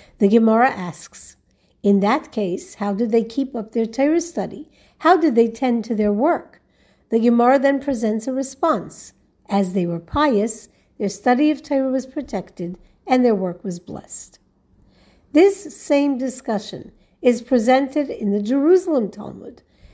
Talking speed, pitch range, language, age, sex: 155 wpm, 205-275 Hz, English, 60-79, female